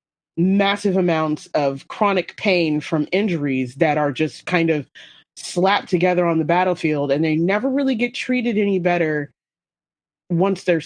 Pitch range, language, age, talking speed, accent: 155-190 Hz, English, 30-49, 150 wpm, American